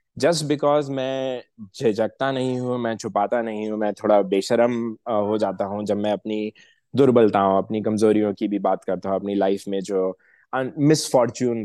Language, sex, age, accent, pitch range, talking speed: Hindi, male, 20-39, native, 100-120 Hz, 165 wpm